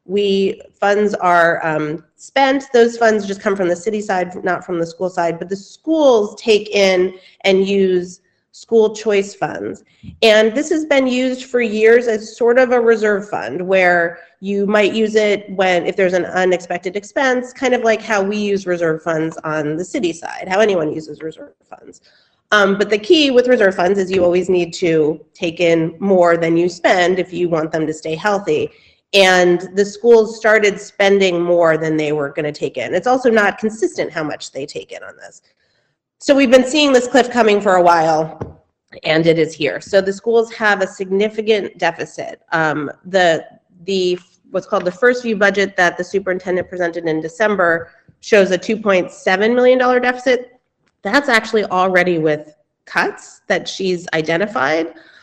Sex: female